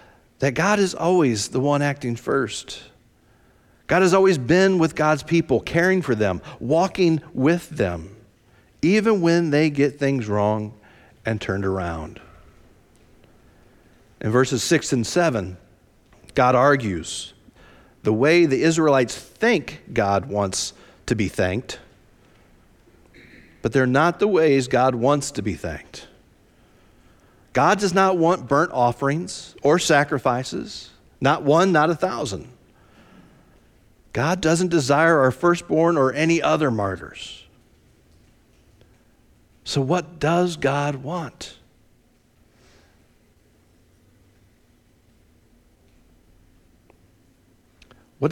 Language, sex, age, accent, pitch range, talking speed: English, male, 40-59, American, 105-165 Hz, 105 wpm